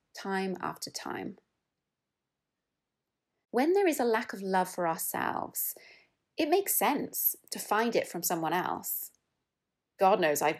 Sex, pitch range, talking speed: female, 175-225 Hz, 135 wpm